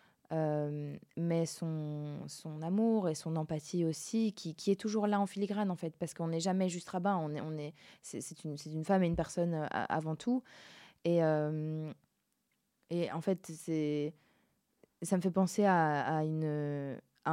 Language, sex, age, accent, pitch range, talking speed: French, female, 20-39, French, 155-190 Hz, 185 wpm